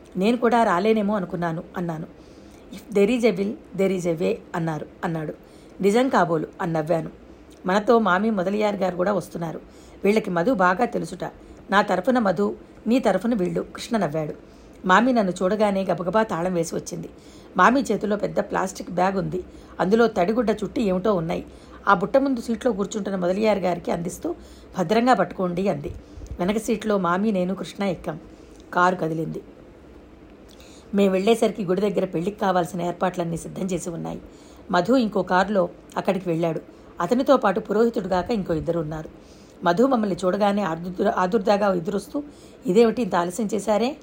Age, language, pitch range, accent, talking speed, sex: 60-79, Telugu, 175-225 Hz, native, 145 wpm, female